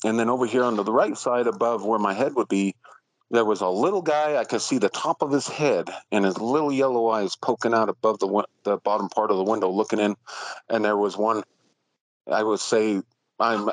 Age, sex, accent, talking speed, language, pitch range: 40-59, male, American, 230 wpm, English, 100-120 Hz